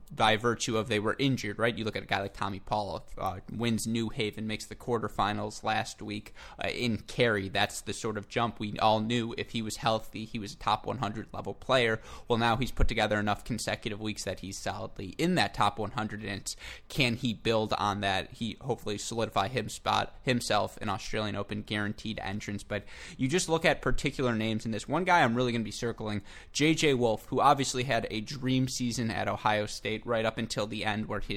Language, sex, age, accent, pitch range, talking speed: English, male, 20-39, American, 105-120 Hz, 215 wpm